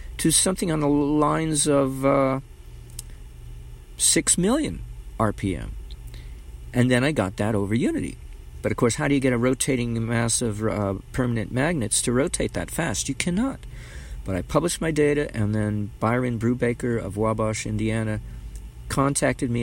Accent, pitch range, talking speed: American, 105-130 Hz, 155 wpm